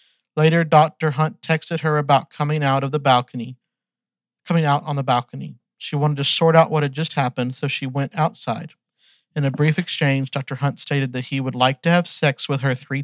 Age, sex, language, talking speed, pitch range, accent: 40-59, male, English, 210 wpm, 135-165 Hz, American